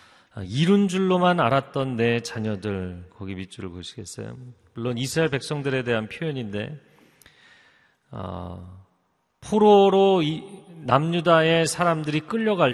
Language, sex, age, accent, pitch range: Korean, male, 40-59, native, 125-200 Hz